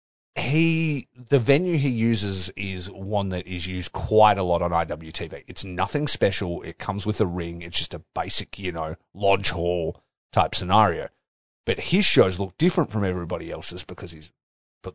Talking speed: 175 wpm